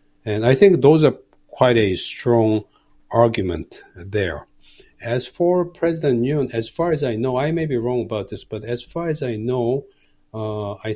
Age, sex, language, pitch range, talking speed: 50-69, male, English, 100-125 Hz, 180 wpm